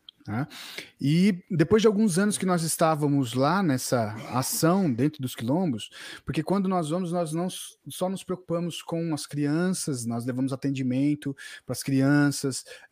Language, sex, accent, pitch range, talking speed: Portuguese, male, Brazilian, 135-175 Hz, 155 wpm